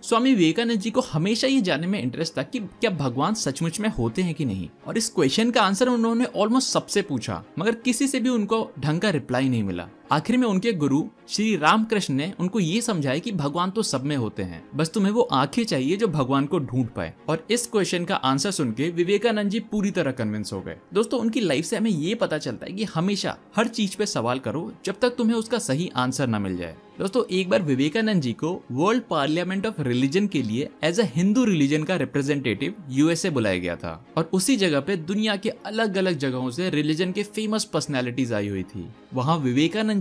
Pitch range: 140-220 Hz